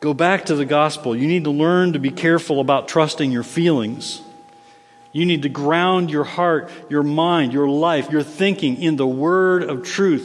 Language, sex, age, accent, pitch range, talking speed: English, male, 50-69, American, 145-190 Hz, 195 wpm